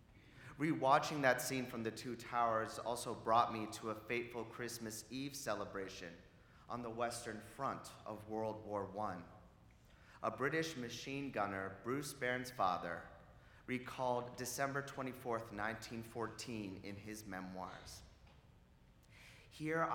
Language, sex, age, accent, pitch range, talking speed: English, male, 30-49, American, 100-125 Hz, 115 wpm